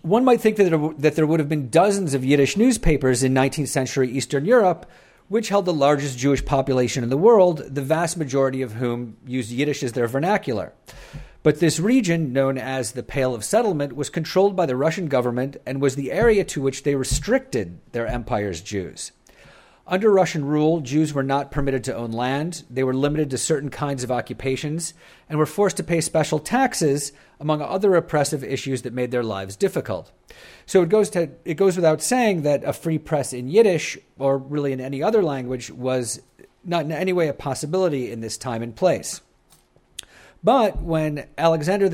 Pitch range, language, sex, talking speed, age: 130-165 Hz, English, male, 185 wpm, 40-59